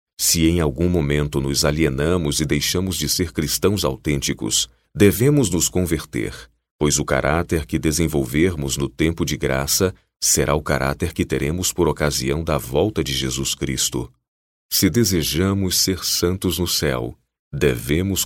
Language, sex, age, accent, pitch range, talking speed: Portuguese, male, 40-59, Brazilian, 70-90 Hz, 140 wpm